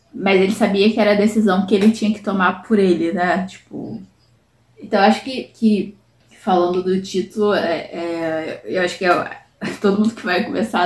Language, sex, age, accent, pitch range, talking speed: Portuguese, female, 10-29, Brazilian, 180-220 Hz, 195 wpm